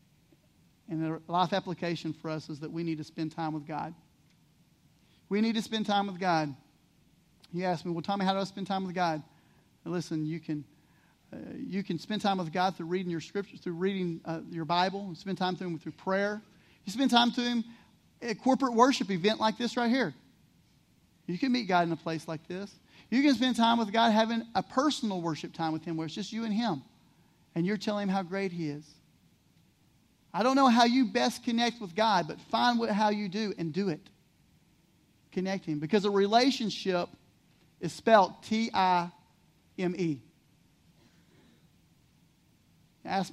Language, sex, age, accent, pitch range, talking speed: English, male, 40-59, American, 165-215 Hz, 190 wpm